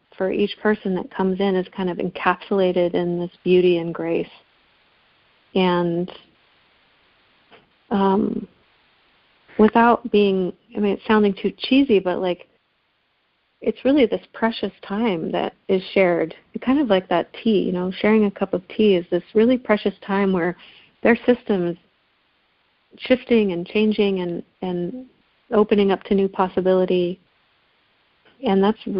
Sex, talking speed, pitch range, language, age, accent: female, 140 wpm, 180-210 Hz, English, 40-59, American